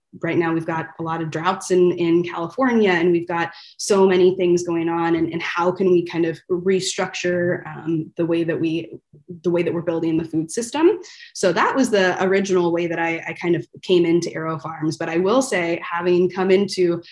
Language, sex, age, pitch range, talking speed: English, female, 20-39, 170-200 Hz, 215 wpm